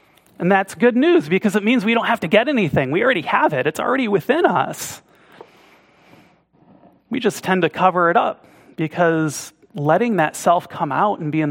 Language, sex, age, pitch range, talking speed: English, male, 30-49, 150-210 Hz, 195 wpm